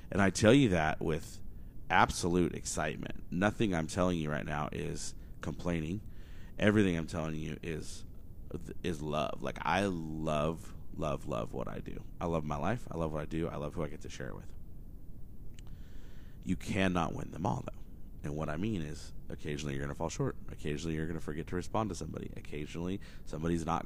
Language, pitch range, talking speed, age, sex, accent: English, 80-95 Hz, 195 wpm, 30-49, male, American